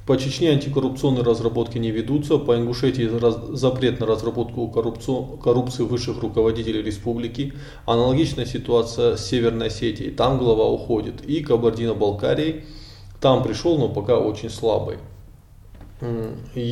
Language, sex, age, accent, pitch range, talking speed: Russian, male, 20-39, native, 110-135 Hz, 115 wpm